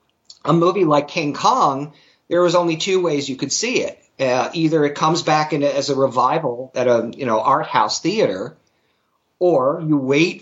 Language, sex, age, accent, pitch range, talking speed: English, male, 50-69, American, 135-165 Hz, 195 wpm